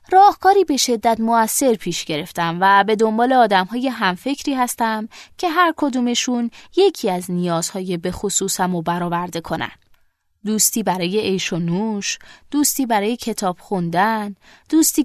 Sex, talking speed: female, 130 wpm